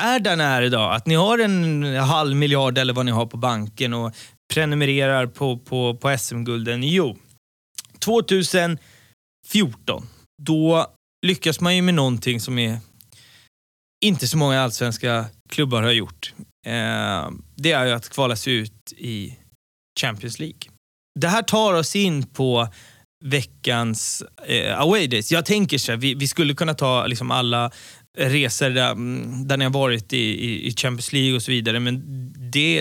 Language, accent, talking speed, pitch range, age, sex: Swedish, native, 155 wpm, 120-150 Hz, 20-39, male